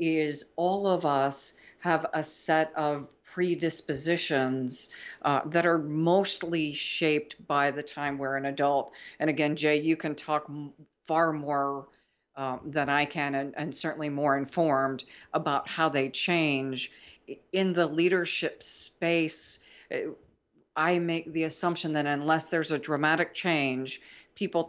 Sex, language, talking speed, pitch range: female, English, 135 wpm, 145-170 Hz